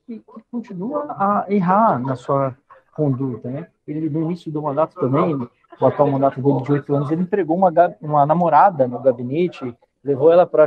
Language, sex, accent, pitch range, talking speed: Portuguese, male, Brazilian, 130-170 Hz, 170 wpm